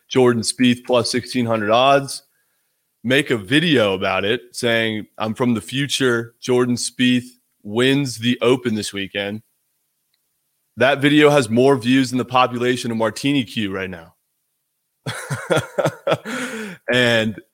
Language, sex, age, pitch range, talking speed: English, male, 20-39, 105-125 Hz, 125 wpm